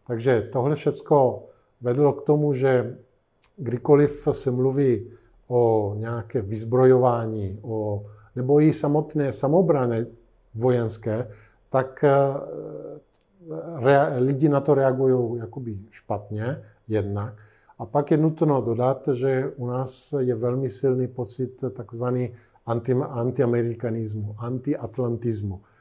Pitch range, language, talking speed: 110-130 Hz, Slovak, 100 wpm